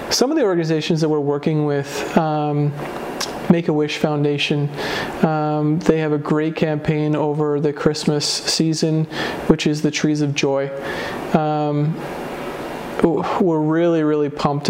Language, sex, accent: English, male, American